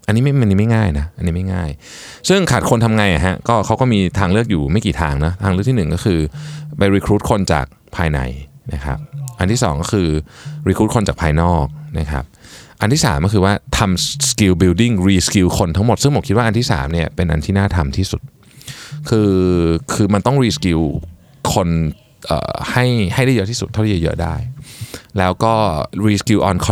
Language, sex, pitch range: Thai, male, 85-120 Hz